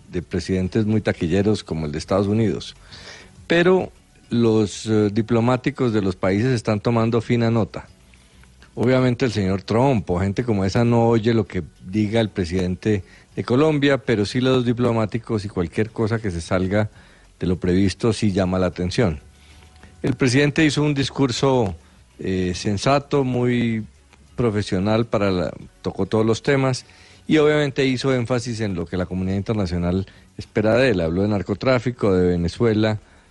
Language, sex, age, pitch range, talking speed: Spanish, male, 40-59, 95-120 Hz, 155 wpm